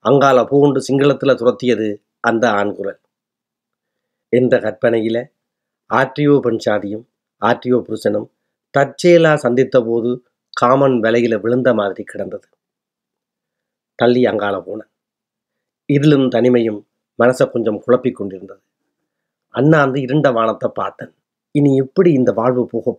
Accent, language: native, Tamil